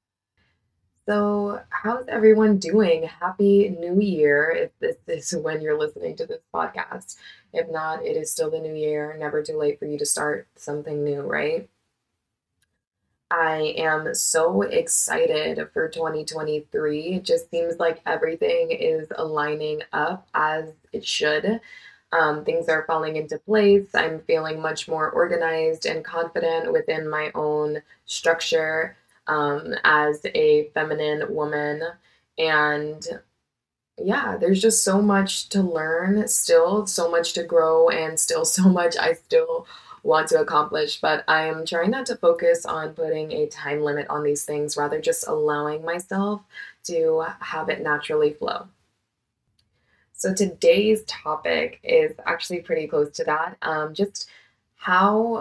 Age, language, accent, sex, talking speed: 20-39, English, American, female, 140 wpm